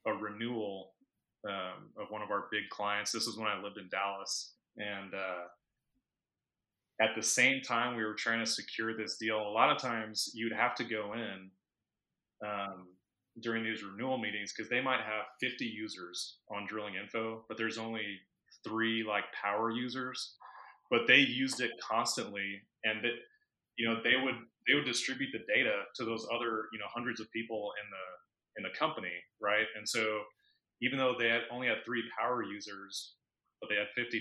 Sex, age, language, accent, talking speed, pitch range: male, 30-49, English, American, 180 wpm, 105-120 Hz